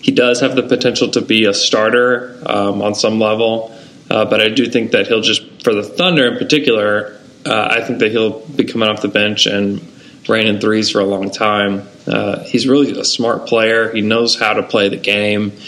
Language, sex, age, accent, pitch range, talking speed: English, male, 20-39, American, 105-125 Hz, 215 wpm